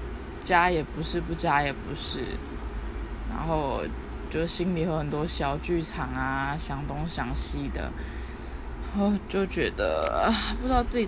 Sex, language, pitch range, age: female, Chinese, 140-210 Hz, 20-39